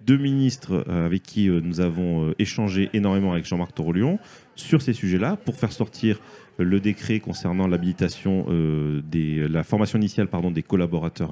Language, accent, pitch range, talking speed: French, French, 95-135 Hz, 155 wpm